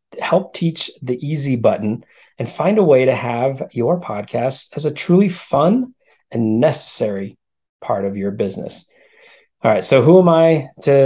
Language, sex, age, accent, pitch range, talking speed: English, male, 30-49, American, 110-145 Hz, 165 wpm